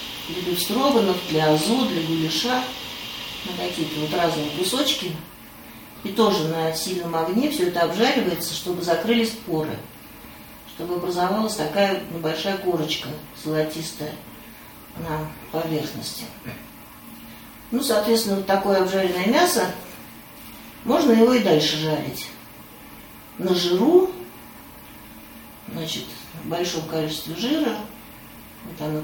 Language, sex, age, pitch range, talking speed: Russian, female, 40-59, 160-215 Hz, 105 wpm